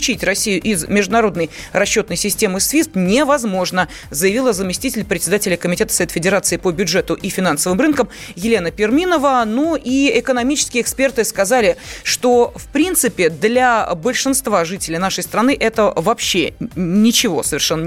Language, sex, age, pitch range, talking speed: Russian, female, 30-49, 185-250 Hz, 125 wpm